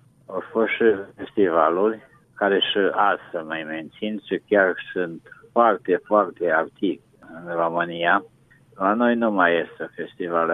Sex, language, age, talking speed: male, Romanian, 50-69, 130 wpm